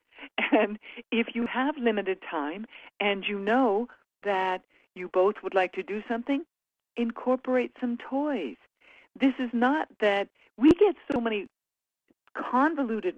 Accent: American